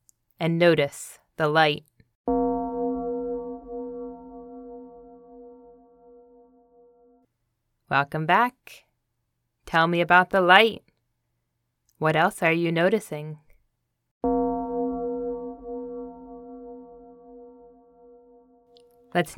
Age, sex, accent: 20-39, female, American